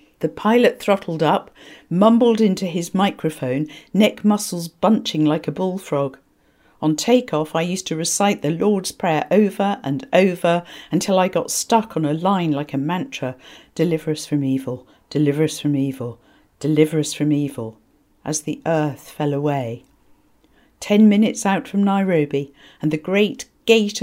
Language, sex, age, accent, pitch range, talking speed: English, female, 50-69, British, 145-190 Hz, 155 wpm